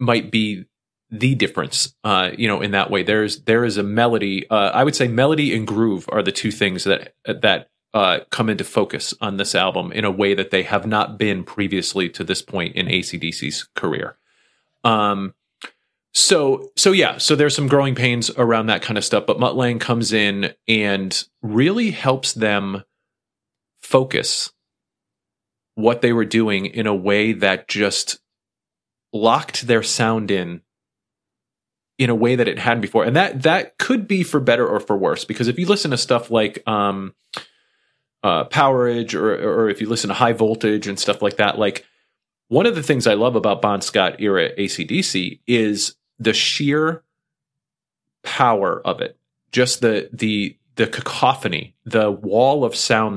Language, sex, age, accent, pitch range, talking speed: English, male, 30-49, American, 100-125 Hz, 175 wpm